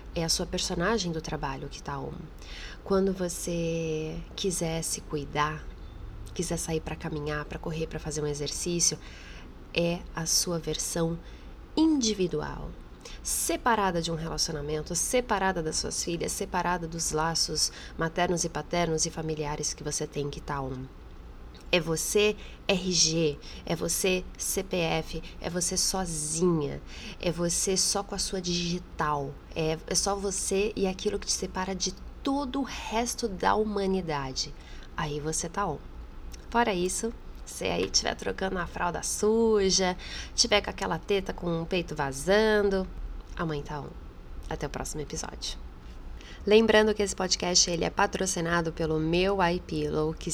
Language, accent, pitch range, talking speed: Portuguese, Brazilian, 155-195 Hz, 145 wpm